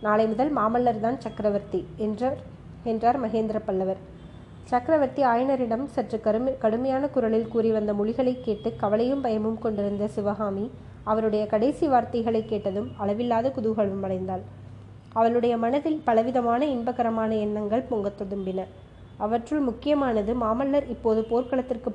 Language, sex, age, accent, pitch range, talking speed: Tamil, female, 20-39, native, 210-250 Hz, 110 wpm